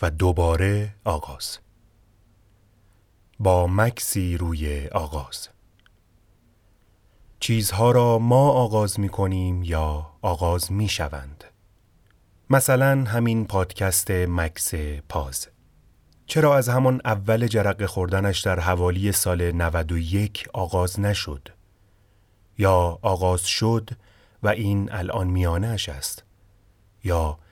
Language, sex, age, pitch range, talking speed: Persian, male, 30-49, 90-105 Hz, 95 wpm